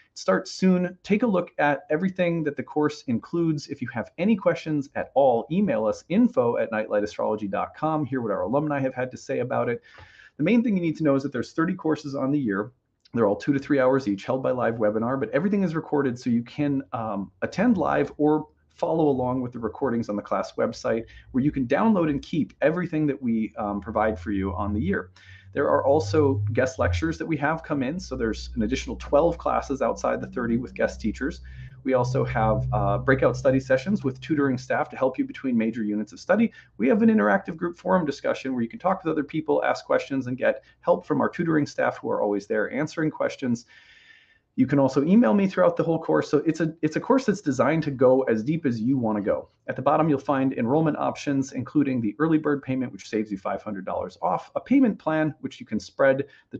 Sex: male